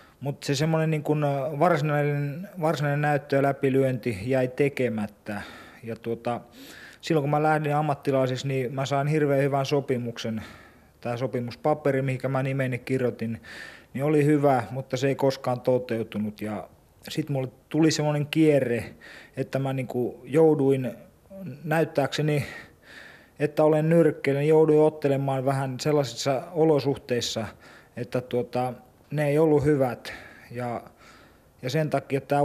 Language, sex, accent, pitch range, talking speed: Finnish, male, native, 120-150 Hz, 125 wpm